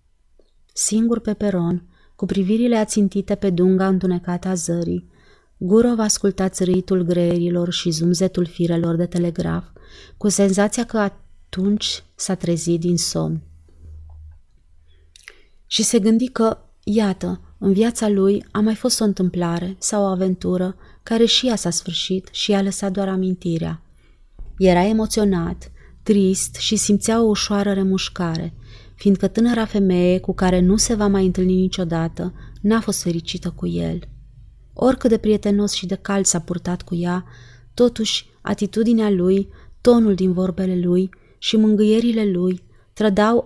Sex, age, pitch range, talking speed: female, 30-49, 175-205 Hz, 135 wpm